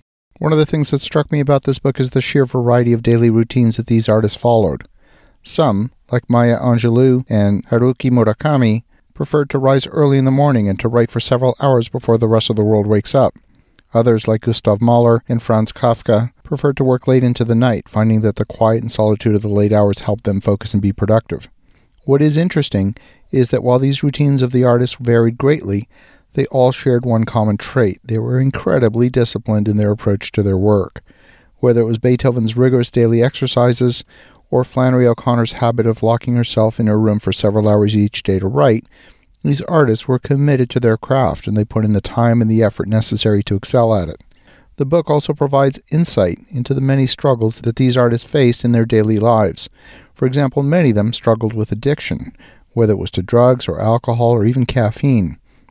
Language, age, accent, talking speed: English, 40-59, American, 205 wpm